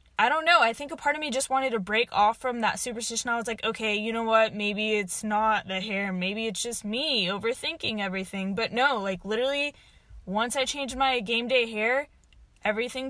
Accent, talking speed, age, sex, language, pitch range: American, 215 wpm, 10-29, female, English, 205-250 Hz